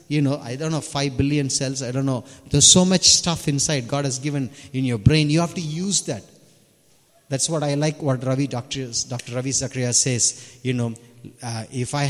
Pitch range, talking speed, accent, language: 115-140 Hz, 215 wpm, Indian, English